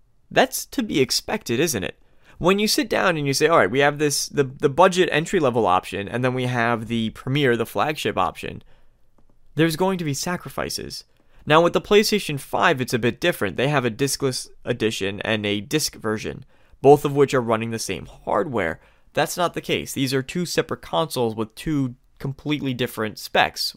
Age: 20-39